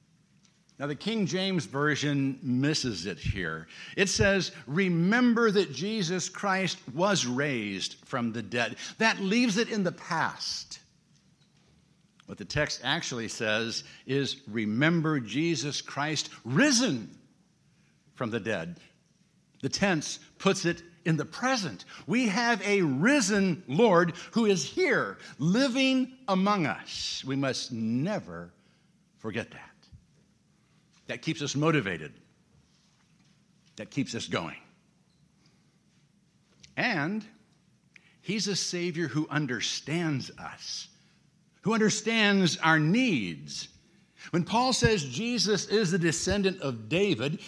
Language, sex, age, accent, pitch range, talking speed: English, male, 60-79, American, 145-200 Hz, 110 wpm